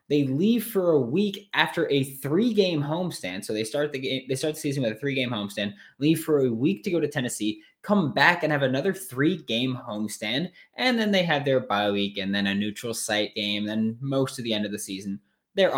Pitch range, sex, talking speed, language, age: 110-155 Hz, male, 225 wpm, English, 20-39